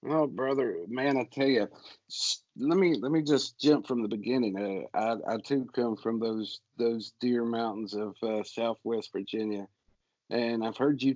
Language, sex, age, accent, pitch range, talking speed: English, male, 50-69, American, 105-125 Hz, 185 wpm